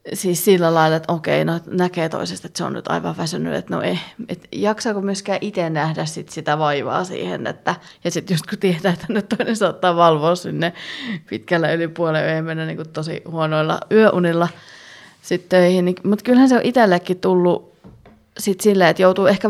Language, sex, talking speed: Finnish, female, 180 wpm